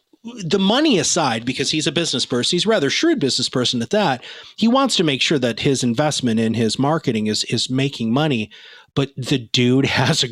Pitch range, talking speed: 120-175 Hz, 210 wpm